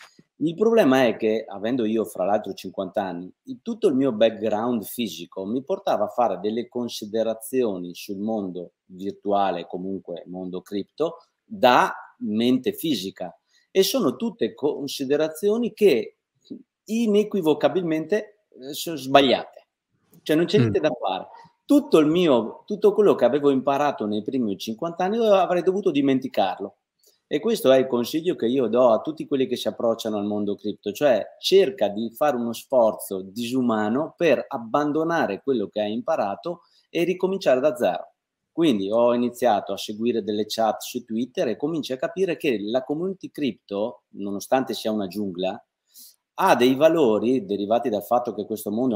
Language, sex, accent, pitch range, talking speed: Italian, male, native, 110-180 Hz, 150 wpm